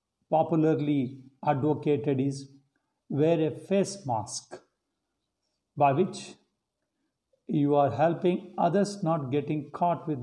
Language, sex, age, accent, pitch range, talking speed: Telugu, male, 50-69, native, 140-170 Hz, 105 wpm